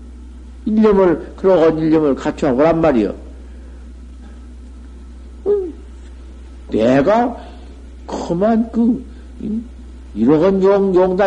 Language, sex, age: Korean, male, 60-79